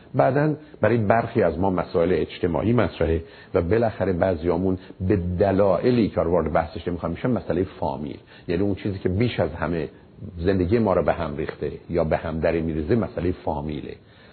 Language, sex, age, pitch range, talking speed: Persian, male, 50-69, 85-110 Hz, 170 wpm